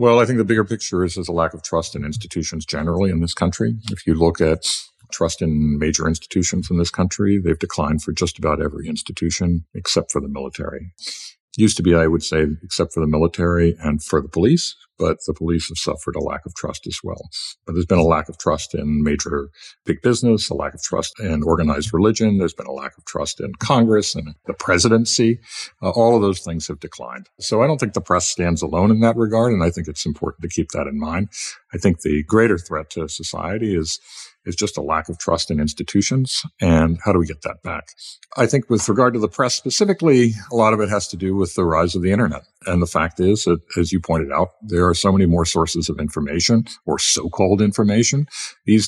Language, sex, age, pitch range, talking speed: English, male, 50-69, 85-115 Hz, 230 wpm